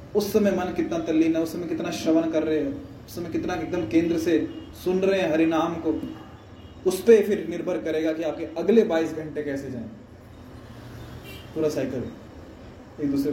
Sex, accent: male, native